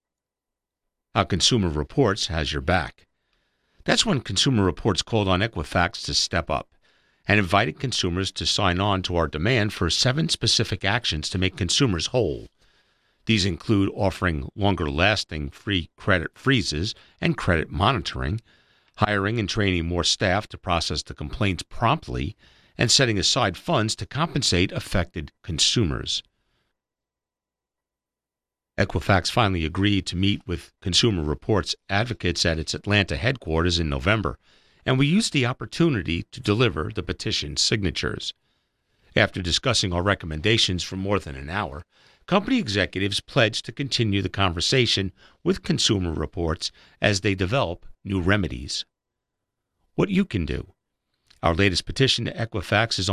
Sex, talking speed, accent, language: male, 135 wpm, American, English